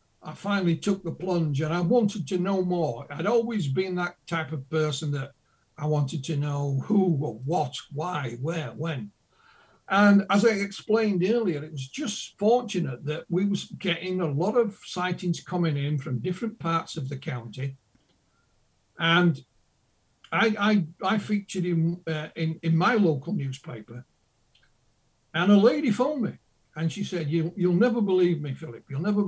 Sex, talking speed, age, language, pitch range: male, 170 wpm, 60-79, German, 150-195 Hz